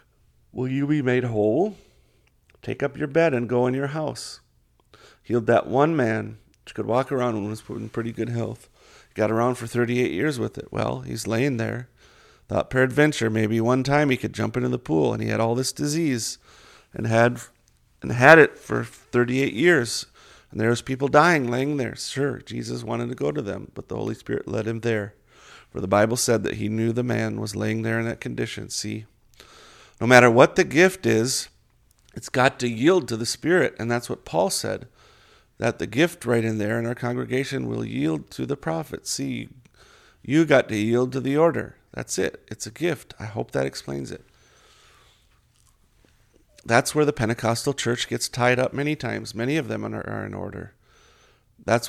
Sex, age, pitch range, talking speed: male, 40-59, 110-135 Hz, 200 wpm